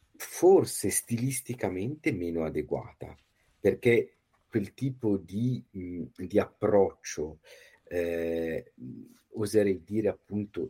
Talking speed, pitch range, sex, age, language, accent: 80 wpm, 85-110 Hz, male, 50-69, Italian, native